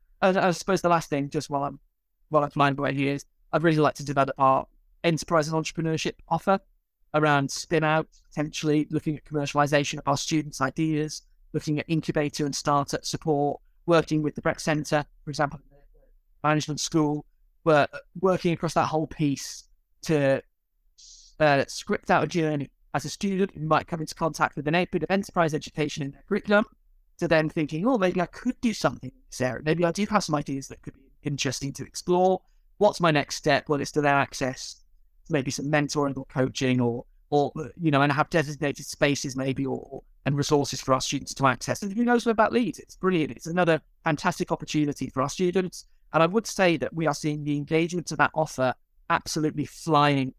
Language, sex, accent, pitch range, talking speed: English, male, British, 140-165 Hz, 200 wpm